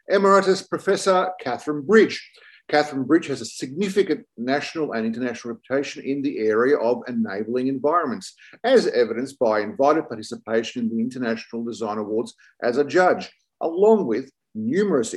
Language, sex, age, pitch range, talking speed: English, male, 50-69, 120-180 Hz, 140 wpm